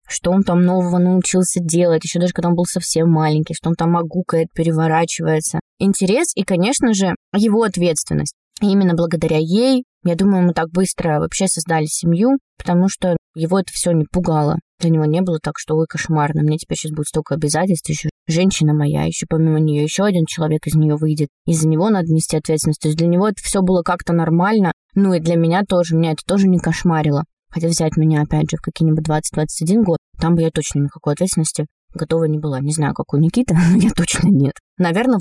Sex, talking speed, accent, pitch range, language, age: female, 205 wpm, native, 160-185 Hz, Russian, 20-39